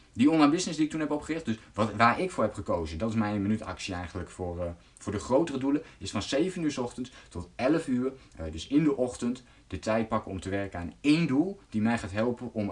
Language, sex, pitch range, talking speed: Dutch, male, 100-140 Hz, 250 wpm